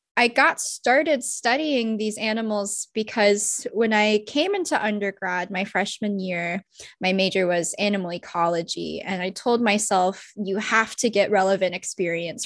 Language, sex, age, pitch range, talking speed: English, female, 10-29, 190-230 Hz, 145 wpm